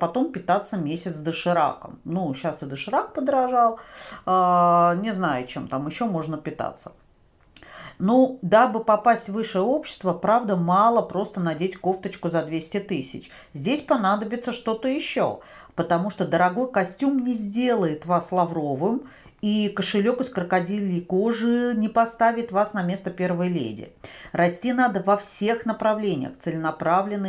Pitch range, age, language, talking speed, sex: 175-235 Hz, 40-59, Russian, 135 wpm, female